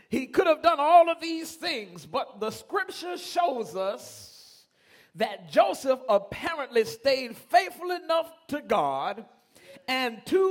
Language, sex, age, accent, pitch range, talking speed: English, male, 40-59, American, 255-330 Hz, 130 wpm